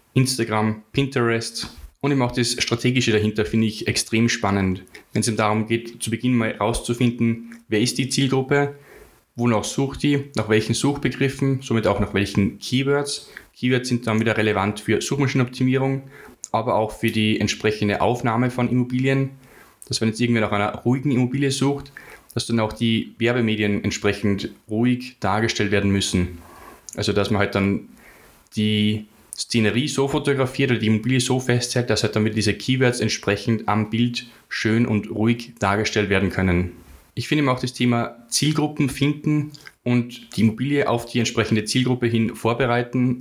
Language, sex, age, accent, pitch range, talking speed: German, male, 10-29, German, 110-130 Hz, 160 wpm